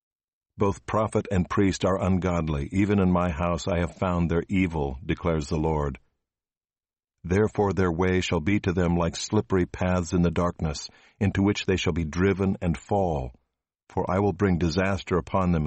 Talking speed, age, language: 175 wpm, 60-79, English